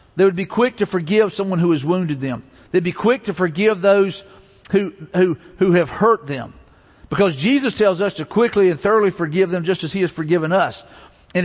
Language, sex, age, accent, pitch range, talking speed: English, male, 50-69, American, 165-215 Hz, 210 wpm